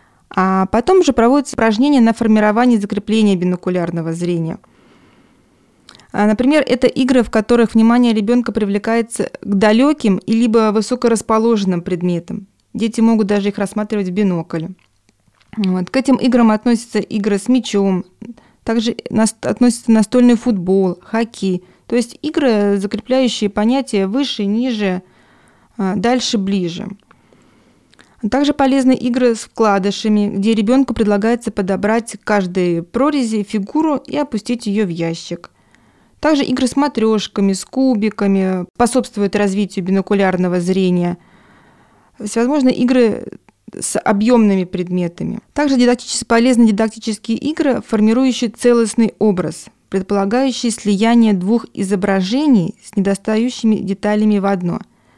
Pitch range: 200-240 Hz